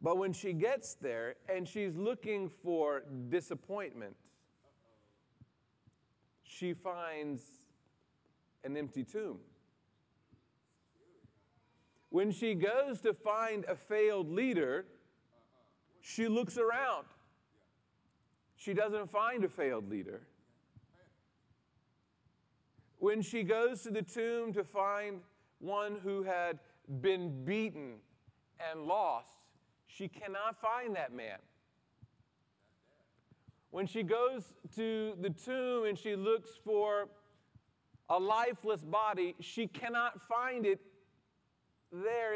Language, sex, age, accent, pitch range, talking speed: English, male, 40-59, American, 185-225 Hz, 100 wpm